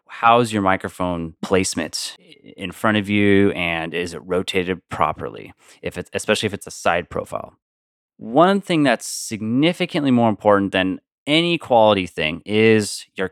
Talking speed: 155 wpm